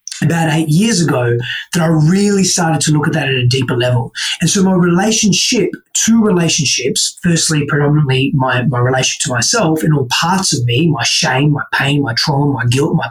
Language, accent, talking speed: English, Australian, 195 wpm